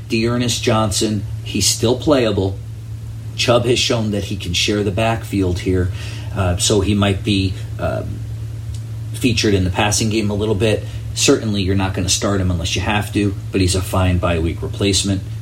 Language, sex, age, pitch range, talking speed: English, male, 40-59, 95-110 Hz, 185 wpm